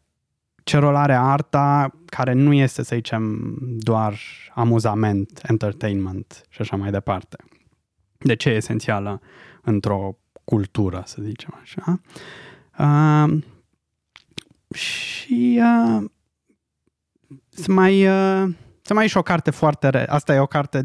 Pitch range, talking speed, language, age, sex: 115-160 Hz, 115 wpm, Romanian, 20-39, male